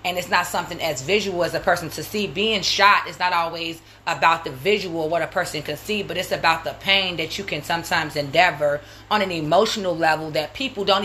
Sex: female